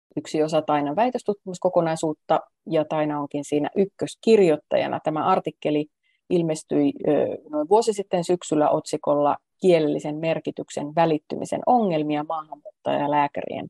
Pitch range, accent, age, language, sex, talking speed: 155-205 Hz, native, 30-49, Finnish, female, 95 wpm